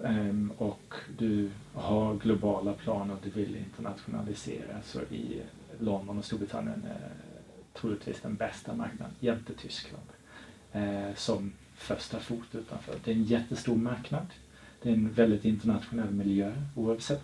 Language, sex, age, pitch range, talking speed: Swedish, male, 30-49, 110-120 Hz, 130 wpm